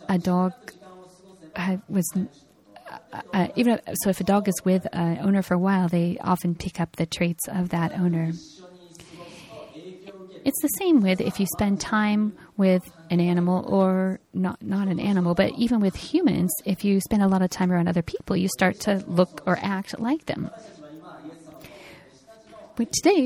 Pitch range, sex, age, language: 180-220 Hz, female, 30-49, Japanese